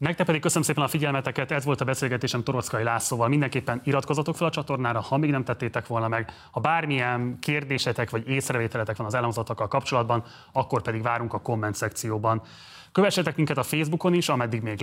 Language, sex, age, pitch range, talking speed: Hungarian, male, 30-49, 110-135 Hz, 180 wpm